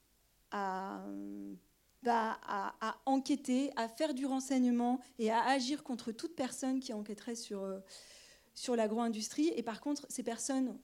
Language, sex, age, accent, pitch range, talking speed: French, female, 40-59, French, 210-260 Hz, 145 wpm